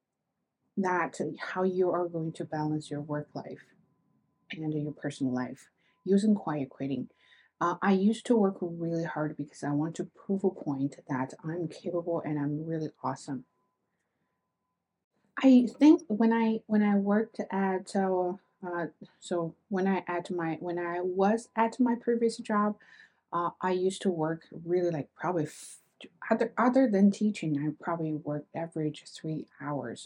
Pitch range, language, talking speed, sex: 155-210 Hz, English, 160 wpm, female